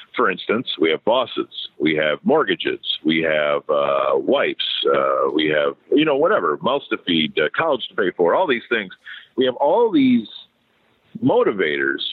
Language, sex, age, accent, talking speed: English, male, 50-69, American, 170 wpm